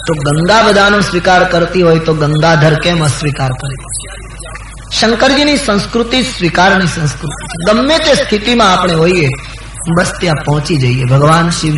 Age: 20-39